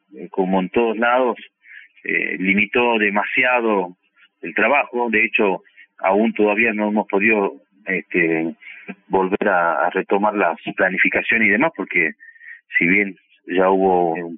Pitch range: 95-120 Hz